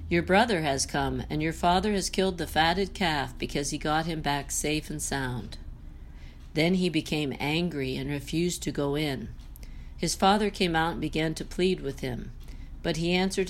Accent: American